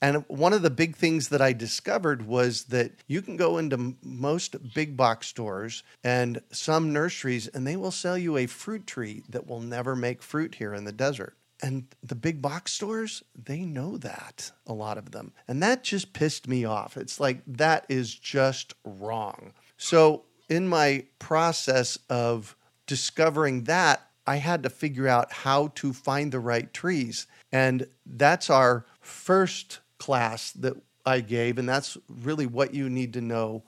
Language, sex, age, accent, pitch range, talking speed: English, male, 40-59, American, 120-145 Hz, 175 wpm